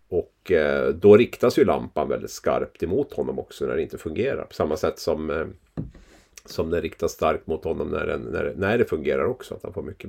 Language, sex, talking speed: English, male, 195 wpm